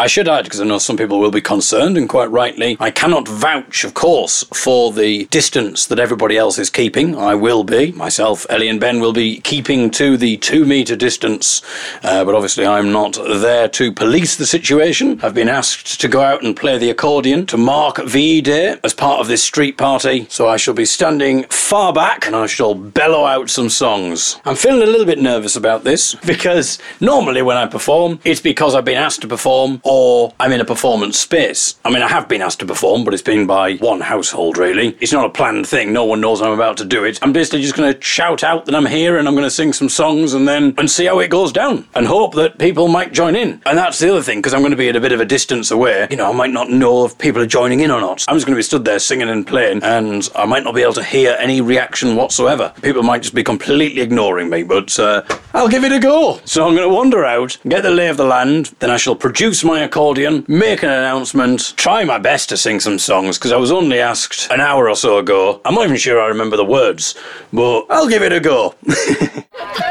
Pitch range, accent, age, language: 120-160 Hz, British, 40-59, English